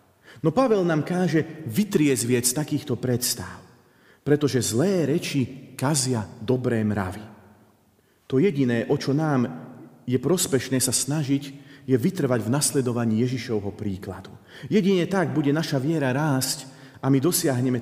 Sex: male